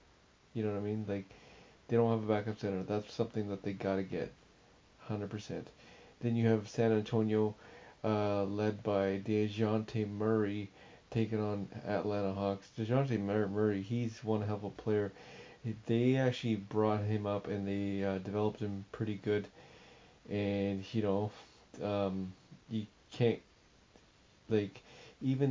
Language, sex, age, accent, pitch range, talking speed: English, male, 30-49, American, 105-115 Hz, 145 wpm